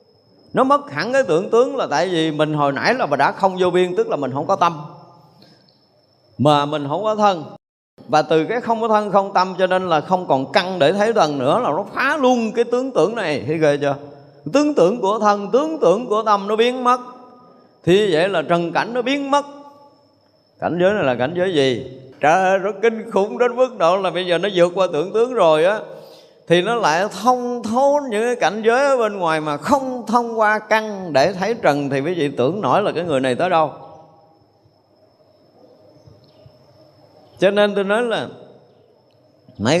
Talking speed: 210 wpm